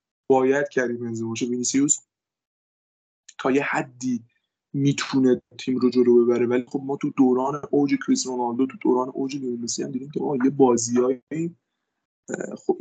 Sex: male